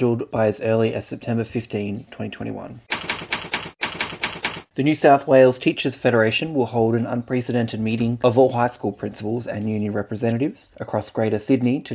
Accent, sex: Australian, male